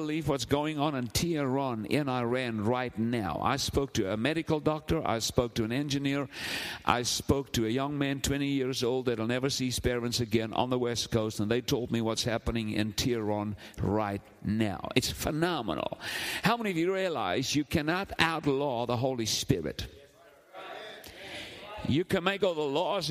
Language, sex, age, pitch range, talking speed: English, male, 50-69, 125-165 Hz, 180 wpm